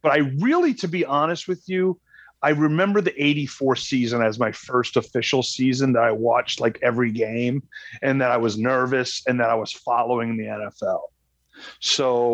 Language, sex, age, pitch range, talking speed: English, male, 30-49, 120-135 Hz, 180 wpm